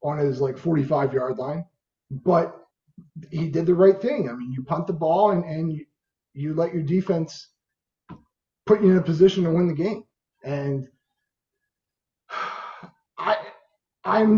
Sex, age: male, 30-49